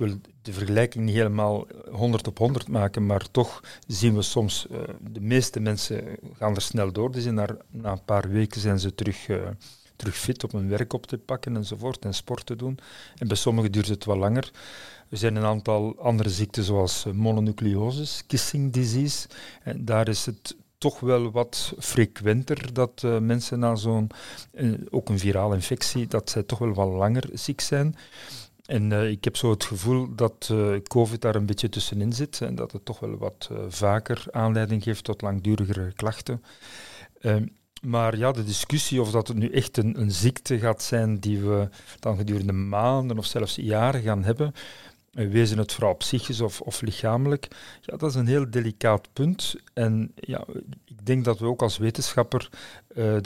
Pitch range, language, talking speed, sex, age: 105-125 Hz, Dutch, 185 wpm, male, 40-59